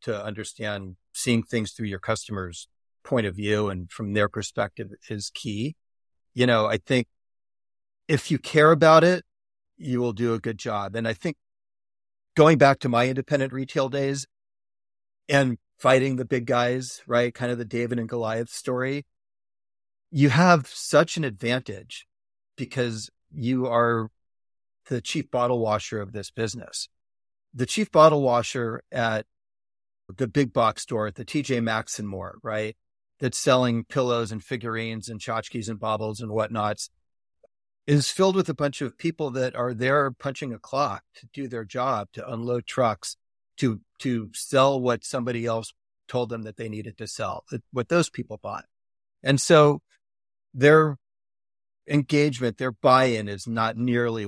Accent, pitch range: American, 105-130 Hz